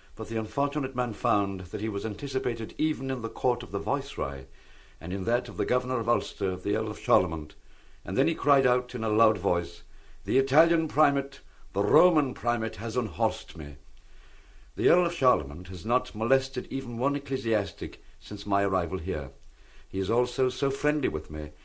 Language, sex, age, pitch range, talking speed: English, male, 60-79, 95-135 Hz, 185 wpm